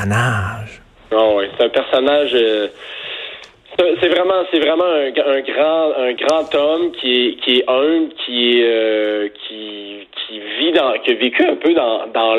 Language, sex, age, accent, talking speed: French, male, 30-49, Canadian, 180 wpm